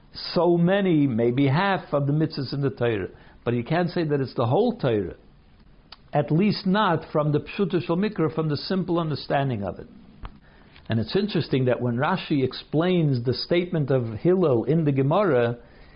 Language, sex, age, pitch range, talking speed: English, male, 60-79, 130-175 Hz, 175 wpm